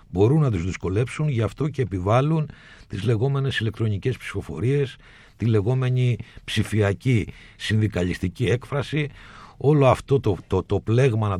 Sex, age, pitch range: male, 60-79, 105-135 Hz